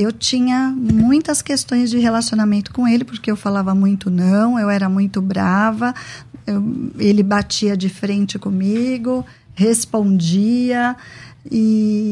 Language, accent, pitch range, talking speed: Portuguese, Brazilian, 200-240 Hz, 125 wpm